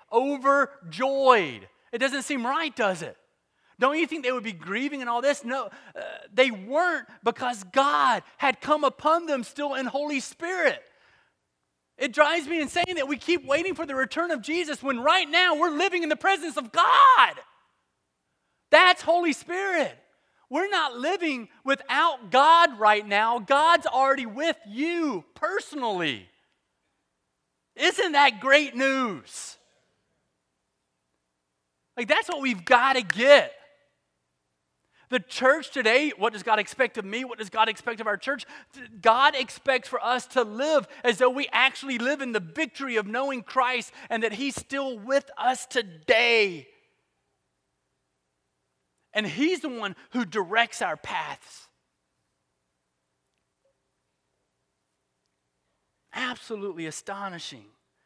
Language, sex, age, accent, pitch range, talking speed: English, male, 30-49, American, 200-295 Hz, 135 wpm